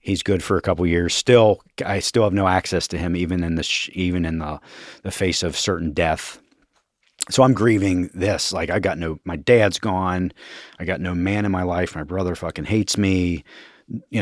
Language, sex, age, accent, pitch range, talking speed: English, male, 40-59, American, 85-100 Hz, 210 wpm